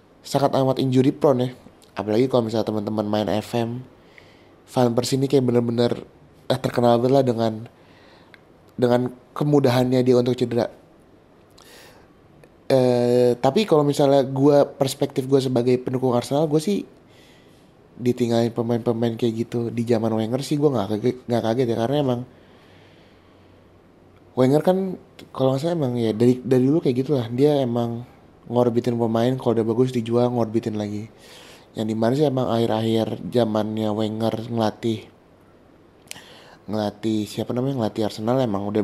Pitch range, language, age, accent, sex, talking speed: 110-130 Hz, Indonesian, 20-39, native, male, 135 wpm